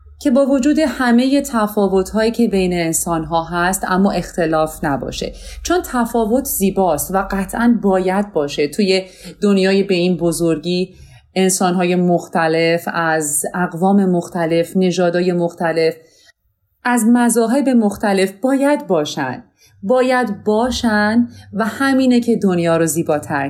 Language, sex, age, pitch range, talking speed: Persian, female, 30-49, 165-225 Hz, 110 wpm